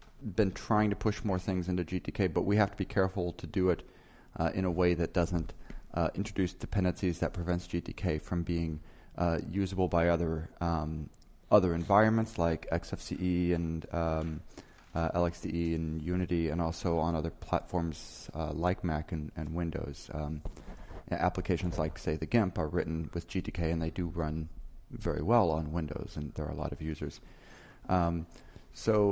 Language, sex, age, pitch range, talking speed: German, male, 30-49, 80-95 Hz, 175 wpm